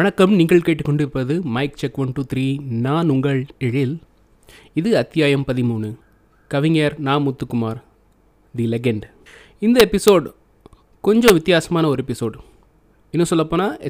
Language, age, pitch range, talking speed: Tamil, 30-49, 130-165 Hz, 120 wpm